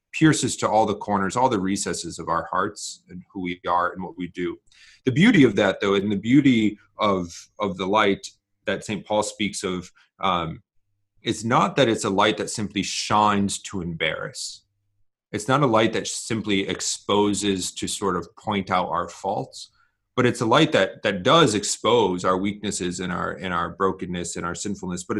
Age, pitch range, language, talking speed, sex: 30-49, 90-110 Hz, English, 195 wpm, male